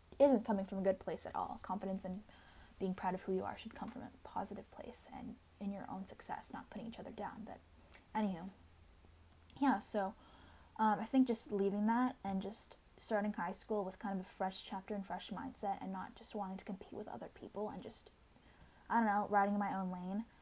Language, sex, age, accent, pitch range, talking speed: English, female, 10-29, American, 185-220 Hz, 215 wpm